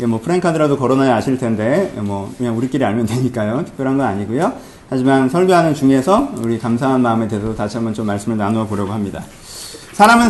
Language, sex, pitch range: Korean, male, 120-200 Hz